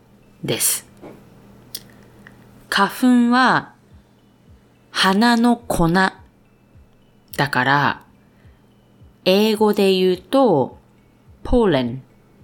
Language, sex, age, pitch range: Japanese, female, 20-39, 135-210 Hz